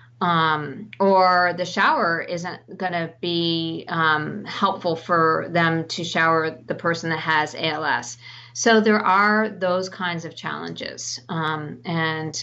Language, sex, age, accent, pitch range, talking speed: English, female, 40-59, American, 160-185 Hz, 135 wpm